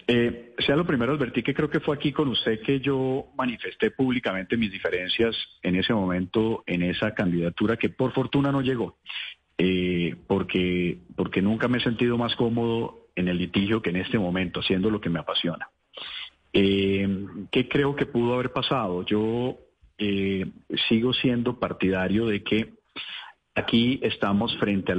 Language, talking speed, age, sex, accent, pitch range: Spanish, 165 wpm, 40-59, male, Colombian, 95-120 Hz